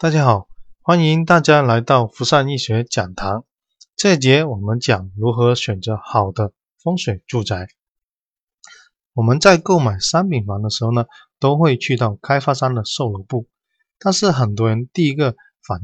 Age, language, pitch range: 20-39, Chinese, 110-155 Hz